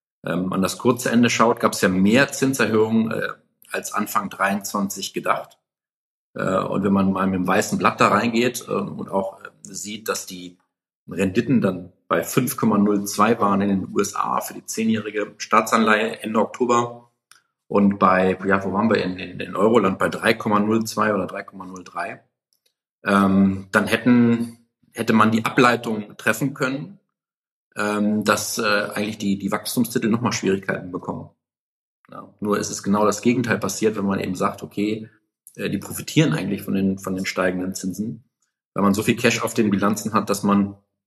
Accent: German